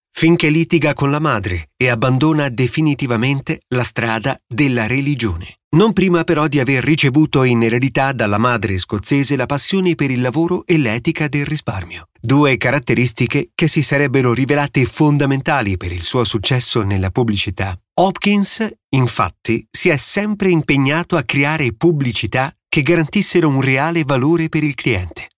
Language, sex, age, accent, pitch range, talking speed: Italian, male, 30-49, native, 120-160 Hz, 145 wpm